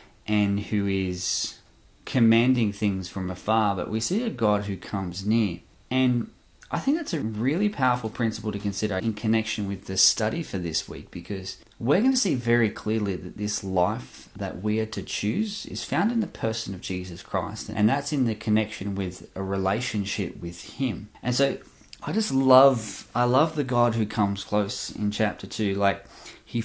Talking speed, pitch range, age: 185 wpm, 95-120 Hz, 20-39